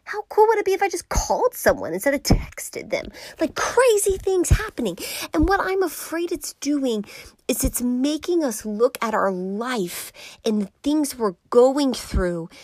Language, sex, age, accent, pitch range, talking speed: English, female, 30-49, American, 180-235 Hz, 180 wpm